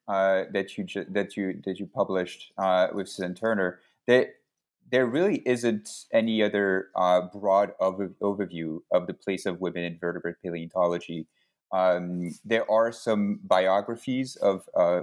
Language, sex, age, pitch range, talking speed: English, male, 30-49, 95-115 Hz, 150 wpm